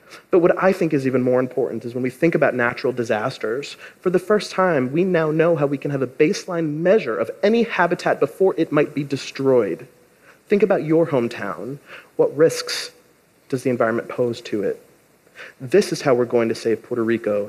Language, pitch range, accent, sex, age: Japanese, 125-175 Hz, American, male, 30-49